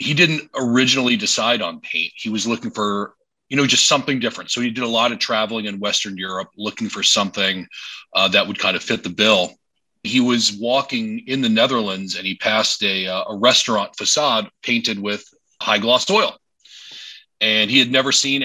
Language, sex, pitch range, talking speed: English, male, 100-125 Hz, 195 wpm